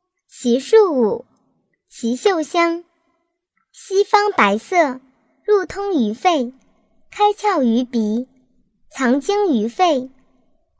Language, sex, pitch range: Chinese, male, 250-350 Hz